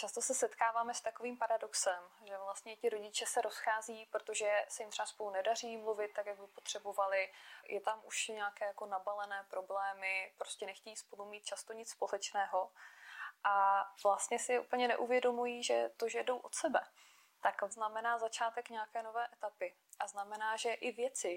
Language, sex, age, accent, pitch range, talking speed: Czech, female, 20-39, native, 200-240 Hz, 165 wpm